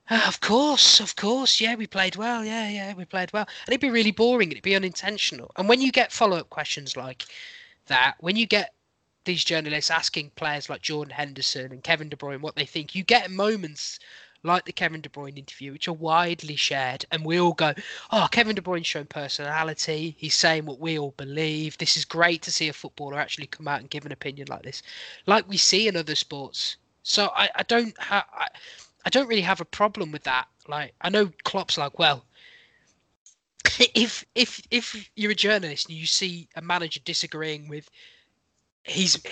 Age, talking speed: 20-39, 200 wpm